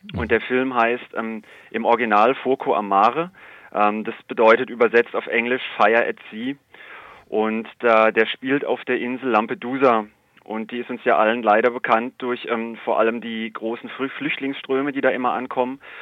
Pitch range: 115-135 Hz